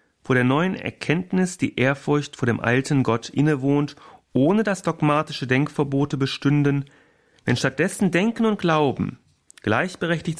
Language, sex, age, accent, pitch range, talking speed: German, male, 40-59, German, 120-150 Hz, 120 wpm